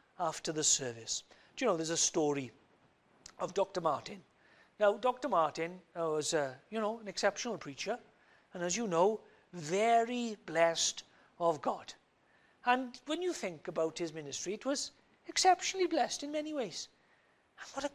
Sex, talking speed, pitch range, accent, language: male, 160 wpm, 160-225 Hz, British, English